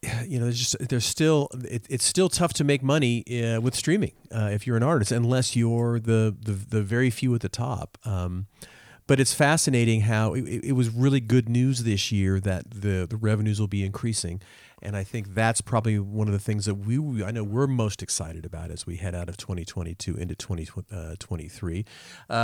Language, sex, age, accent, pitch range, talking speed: English, male, 40-59, American, 105-125 Hz, 205 wpm